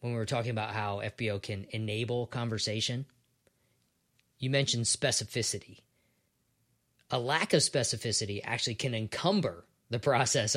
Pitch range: 115-145 Hz